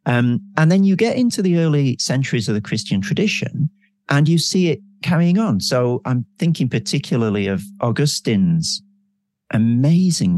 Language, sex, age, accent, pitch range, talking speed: English, male, 40-59, British, 135-195 Hz, 150 wpm